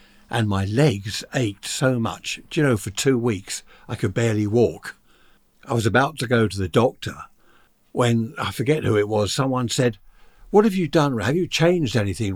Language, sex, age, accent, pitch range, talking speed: English, male, 60-79, British, 105-135 Hz, 195 wpm